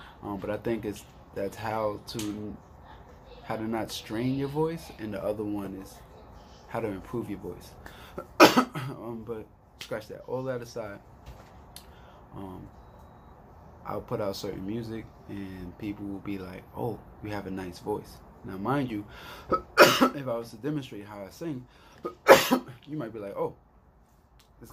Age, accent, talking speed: 20-39, American, 160 wpm